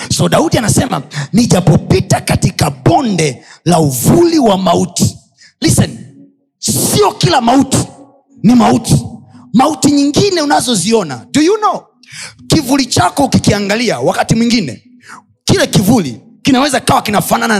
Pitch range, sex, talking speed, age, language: 170-270 Hz, male, 110 wpm, 30-49, Swahili